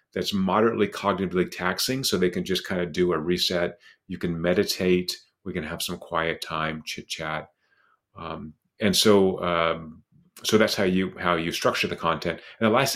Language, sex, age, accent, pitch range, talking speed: English, male, 40-59, American, 90-105 Hz, 185 wpm